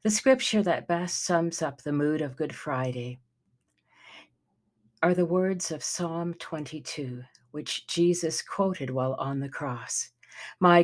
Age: 60-79